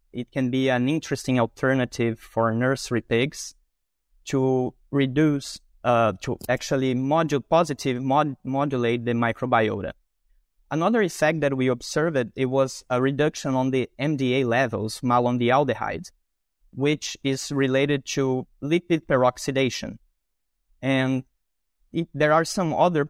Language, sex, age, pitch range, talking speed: English, male, 20-39, 125-150 Hz, 120 wpm